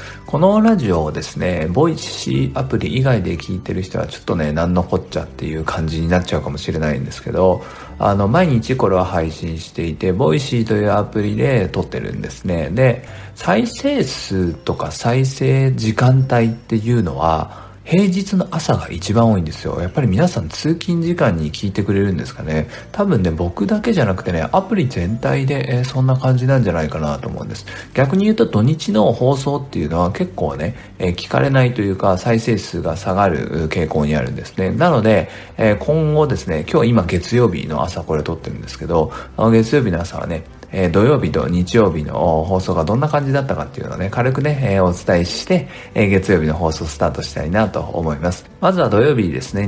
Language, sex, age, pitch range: Japanese, male, 50-69, 85-130 Hz